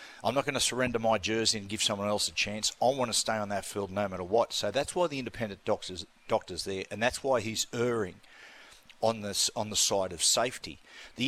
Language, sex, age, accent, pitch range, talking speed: English, male, 40-59, Australian, 105-125 Hz, 235 wpm